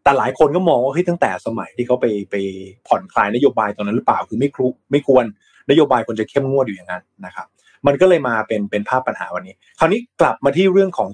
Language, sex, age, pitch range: Thai, male, 20-39, 120-160 Hz